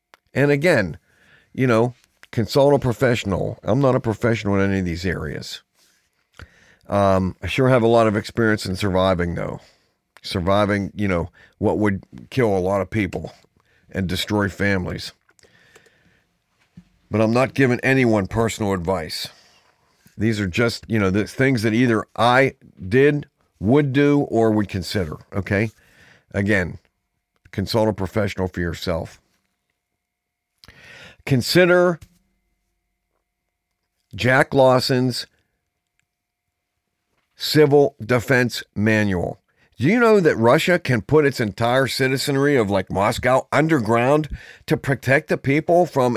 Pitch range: 100-140 Hz